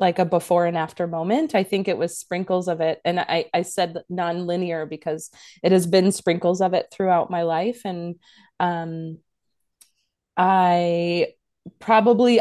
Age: 20-39